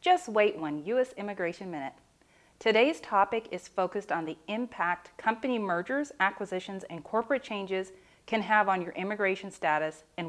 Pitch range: 170-220 Hz